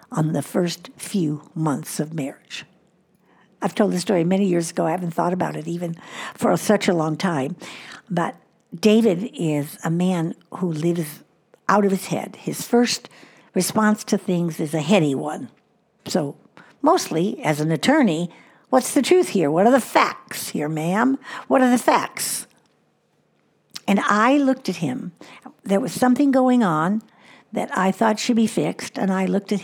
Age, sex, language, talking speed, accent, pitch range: 60-79, female, English, 170 wpm, American, 180-240 Hz